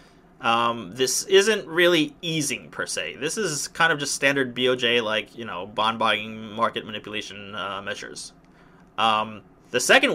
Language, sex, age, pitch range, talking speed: English, male, 30-49, 120-175 Hz, 150 wpm